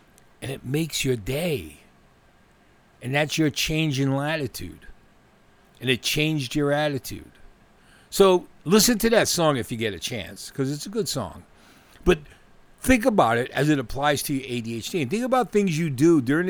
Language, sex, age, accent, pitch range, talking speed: English, male, 60-79, American, 110-155 Hz, 175 wpm